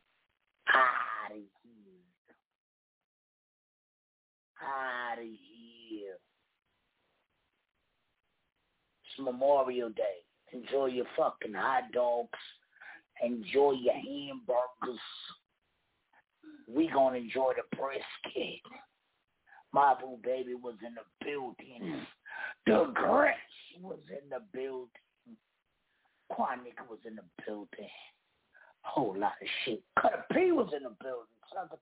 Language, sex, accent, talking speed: English, male, American, 100 wpm